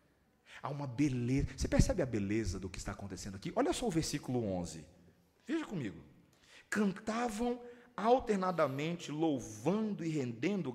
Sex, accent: male, Brazilian